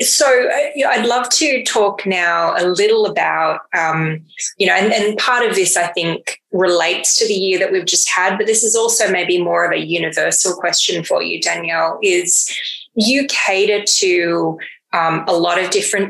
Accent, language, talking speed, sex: Australian, English, 185 wpm, female